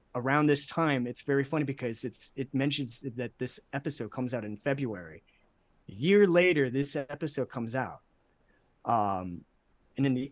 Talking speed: 165 wpm